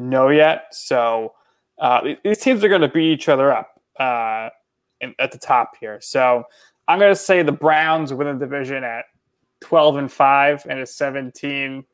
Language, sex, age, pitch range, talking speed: English, male, 20-39, 125-145 Hz, 175 wpm